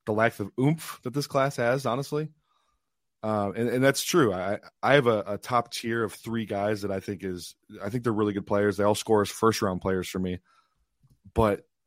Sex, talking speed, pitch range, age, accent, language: male, 220 wpm, 100-125 Hz, 20-39, American, English